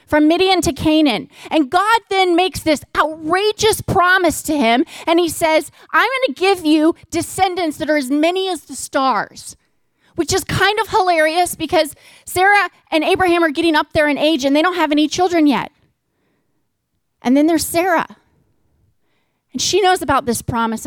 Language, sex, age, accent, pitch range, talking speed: English, female, 30-49, American, 265-355 Hz, 175 wpm